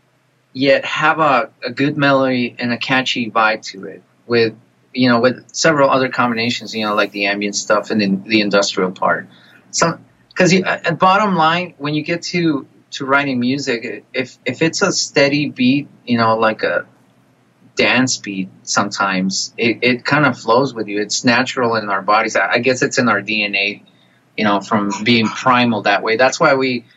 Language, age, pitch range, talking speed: English, 30-49, 110-145 Hz, 185 wpm